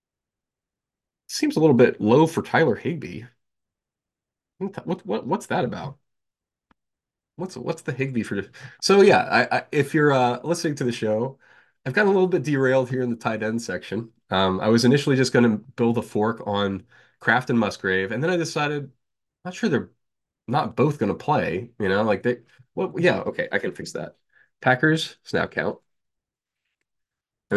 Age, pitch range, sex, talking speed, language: 20-39, 105-135 Hz, male, 180 wpm, English